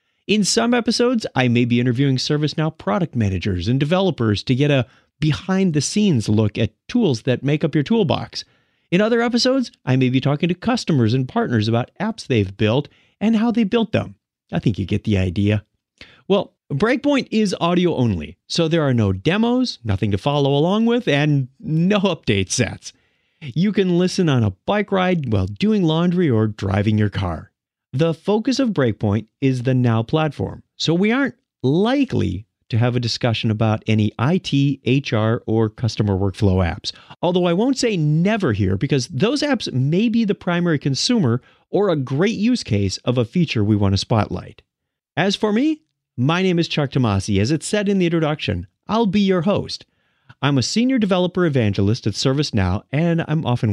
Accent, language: American, English